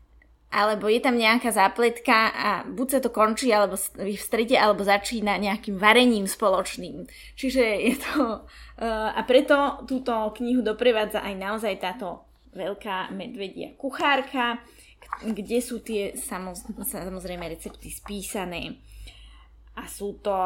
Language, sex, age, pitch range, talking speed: Slovak, female, 20-39, 190-235 Hz, 120 wpm